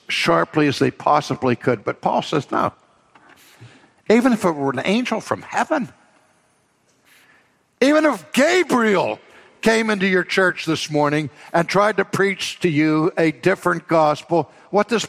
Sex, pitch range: male, 125-175 Hz